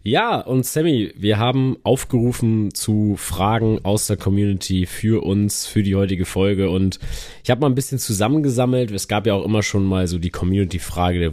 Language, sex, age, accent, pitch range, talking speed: German, male, 20-39, German, 95-110 Hz, 185 wpm